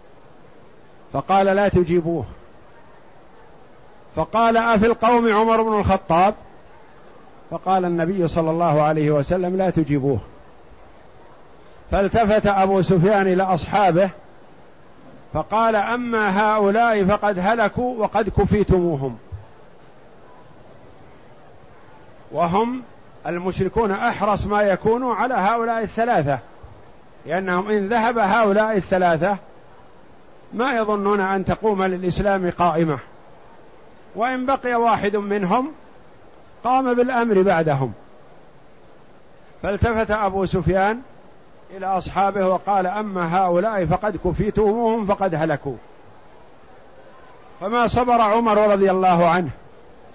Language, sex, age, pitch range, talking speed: Arabic, male, 50-69, 180-220 Hz, 85 wpm